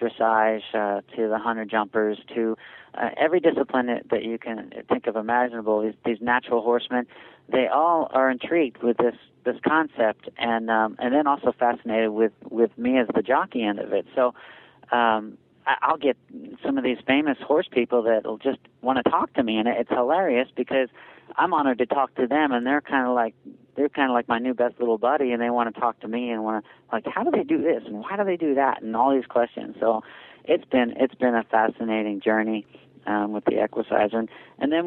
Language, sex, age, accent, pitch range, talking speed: English, male, 40-59, American, 110-130 Hz, 220 wpm